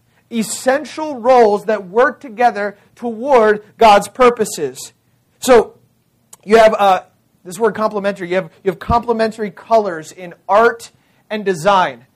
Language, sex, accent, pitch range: English, male, American, 185-235 Hz